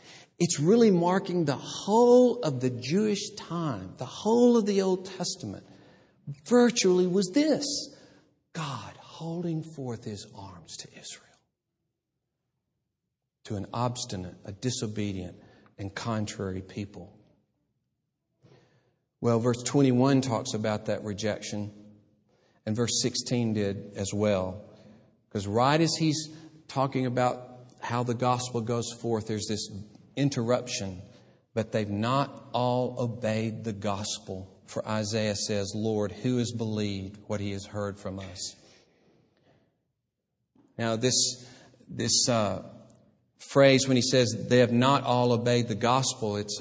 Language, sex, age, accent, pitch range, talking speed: English, male, 50-69, American, 105-135 Hz, 125 wpm